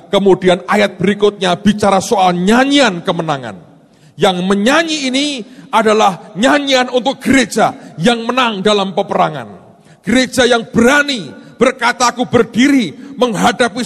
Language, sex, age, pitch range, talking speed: Indonesian, male, 40-59, 180-235 Hz, 110 wpm